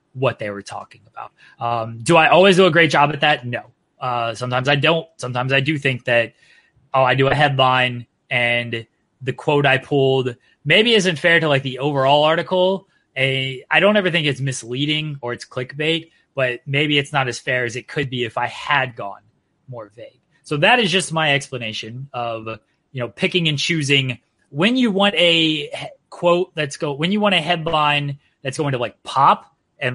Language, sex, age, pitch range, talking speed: English, male, 20-39, 125-155 Hz, 200 wpm